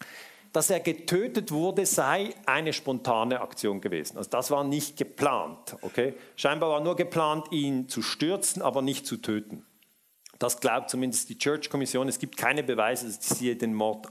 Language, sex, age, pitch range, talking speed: German, male, 50-69, 125-190 Hz, 165 wpm